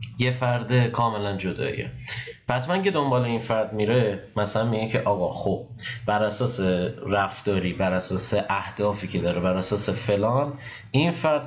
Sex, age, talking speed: male, 30-49, 145 wpm